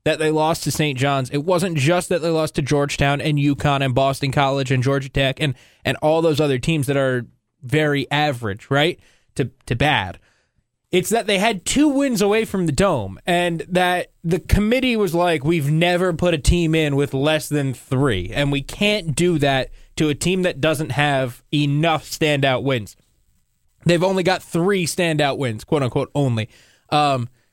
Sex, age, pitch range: male, 20-39, 140-180 Hz